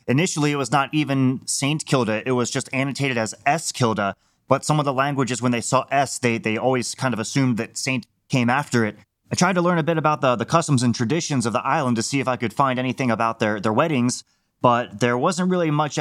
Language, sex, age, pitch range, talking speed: English, male, 30-49, 115-140 Hz, 240 wpm